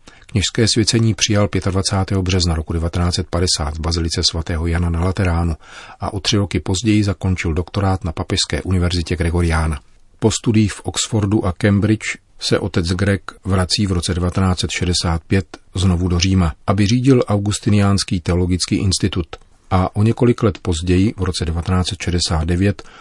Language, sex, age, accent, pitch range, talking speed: Czech, male, 40-59, native, 90-100 Hz, 140 wpm